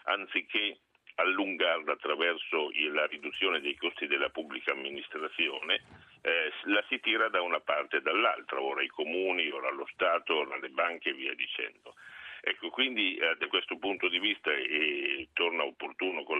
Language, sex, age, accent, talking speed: Italian, male, 60-79, native, 155 wpm